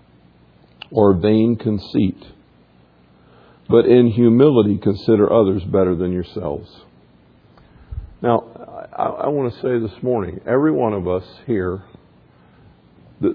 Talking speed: 110 wpm